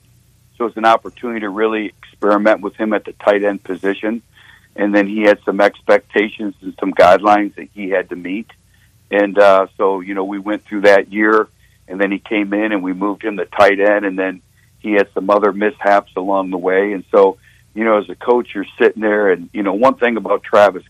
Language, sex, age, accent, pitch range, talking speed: English, male, 60-79, American, 100-110 Hz, 220 wpm